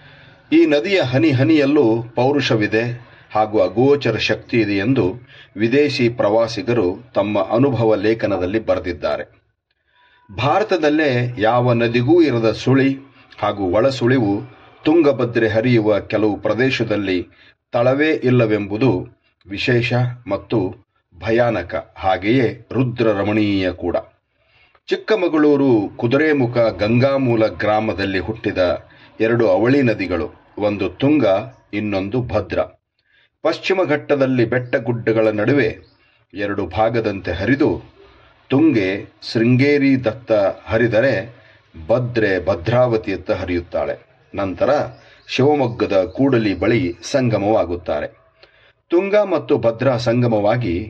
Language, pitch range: Kannada, 110-135 Hz